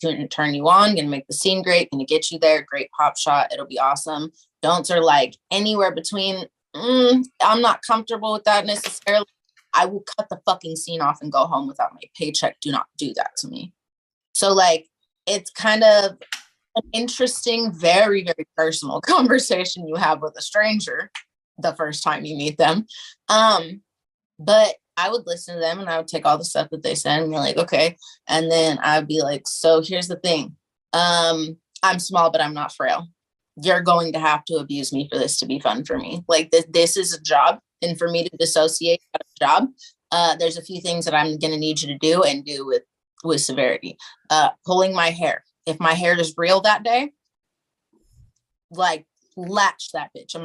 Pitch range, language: 160-205 Hz, English